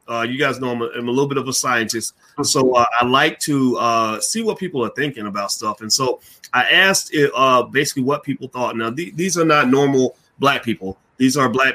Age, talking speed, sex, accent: 30-49, 240 wpm, male, American